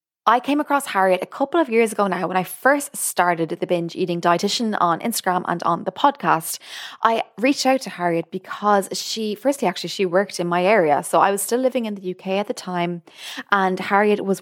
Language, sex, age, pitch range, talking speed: English, female, 20-39, 175-215 Hz, 215 wpm